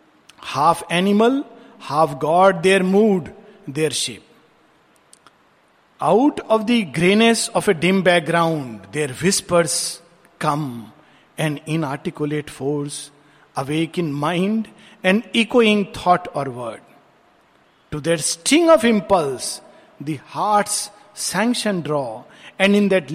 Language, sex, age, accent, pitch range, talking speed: Hindi, male, 50-69, native, 150-215 Hz, 110 wpm